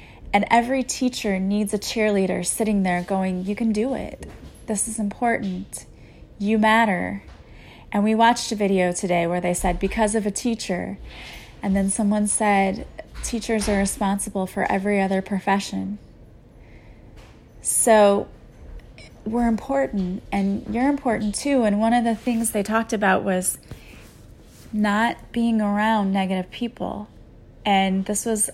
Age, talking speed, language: 20-39, 140 wpm, English